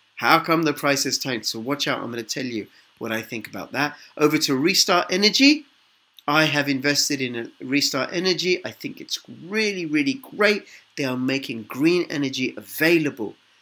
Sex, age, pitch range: male, 50-69, 130-170 Hz